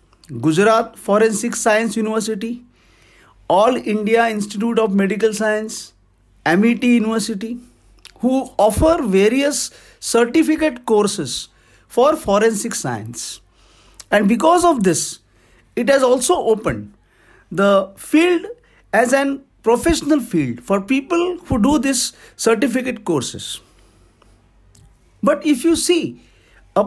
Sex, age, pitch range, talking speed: male, 60-79, 175-275 Hz, 105 wpm